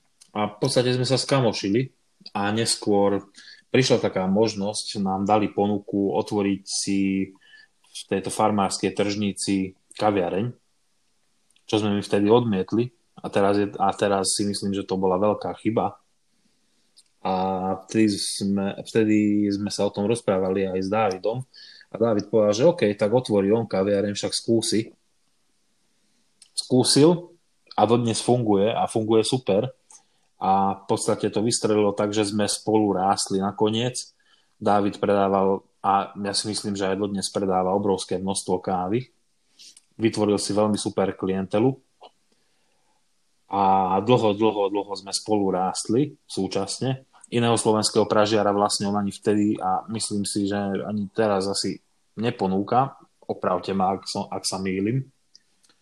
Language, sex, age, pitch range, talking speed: Slovak, male, 20-39, 95-110 Hz, 135 wpm